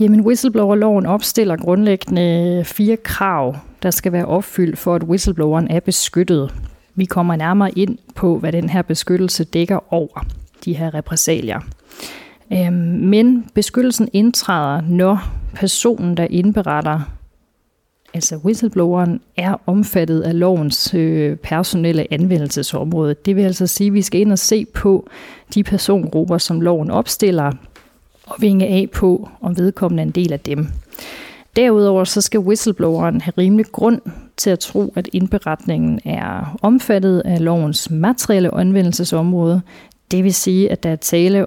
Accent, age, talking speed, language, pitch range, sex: native, 40-59, 135 wpm, Danish, 165-200 Hz, female